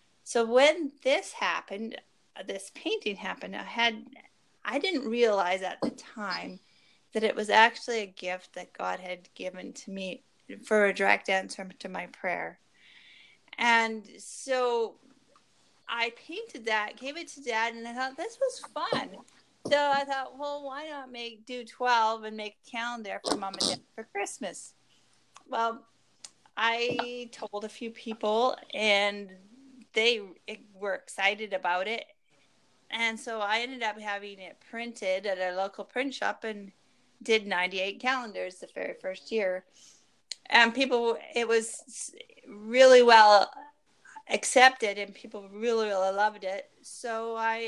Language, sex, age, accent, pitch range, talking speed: English, female, 30-49, American, 200-245 Hz, 145 wpm